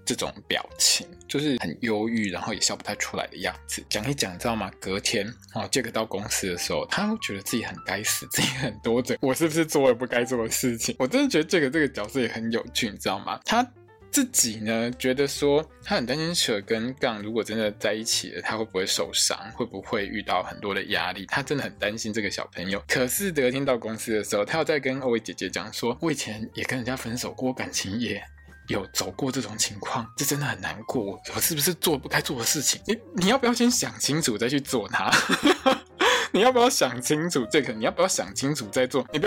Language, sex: Chinese, male